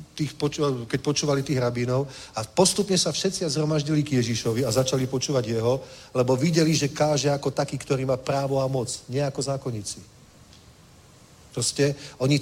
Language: Czech